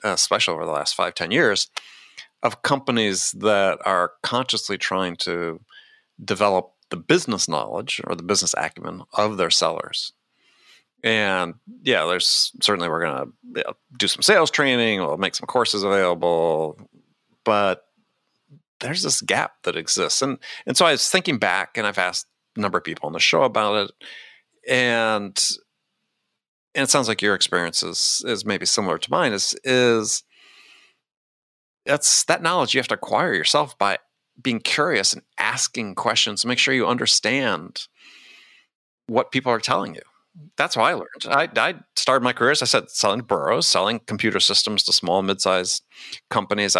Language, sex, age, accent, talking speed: English, male, 40-59, American, 165 wpm